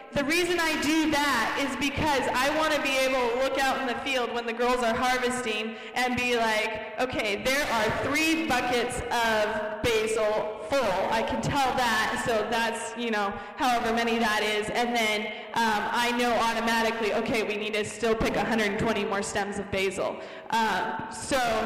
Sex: female